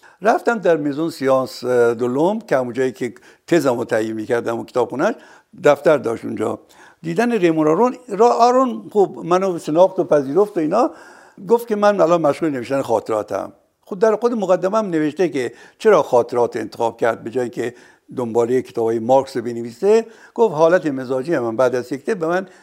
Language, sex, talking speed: Persian, male, 165 wpm